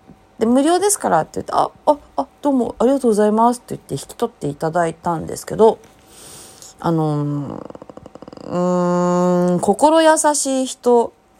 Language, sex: Japanese, female